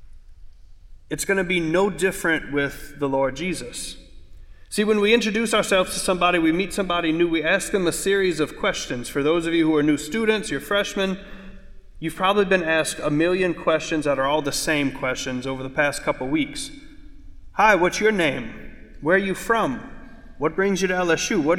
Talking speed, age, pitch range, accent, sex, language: 195 wpm, 40-59, 155-200 Hz, American, male, English